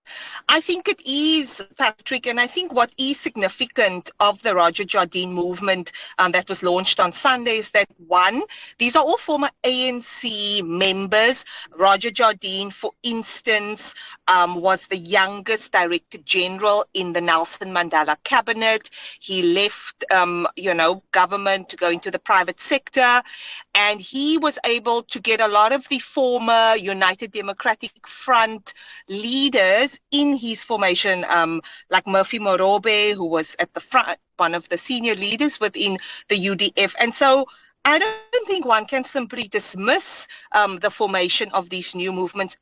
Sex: female